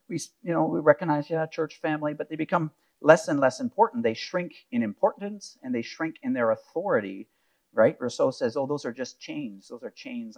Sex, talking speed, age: male, 210 wpm, 50-69